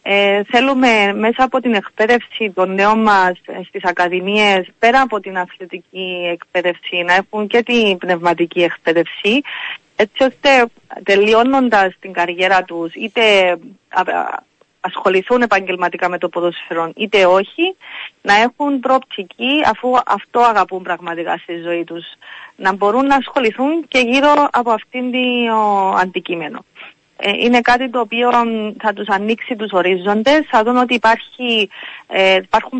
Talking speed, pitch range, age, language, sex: 135 wpm, 180-240 Hz, 30-49, Greek, female